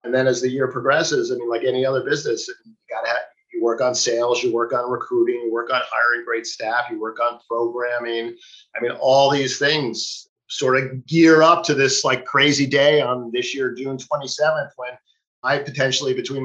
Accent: American